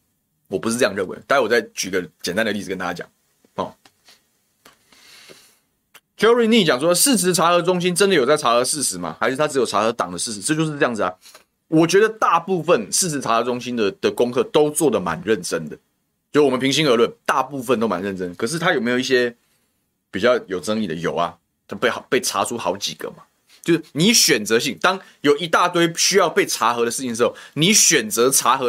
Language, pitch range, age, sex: Chinese, 120-190 Hz, 20-39, male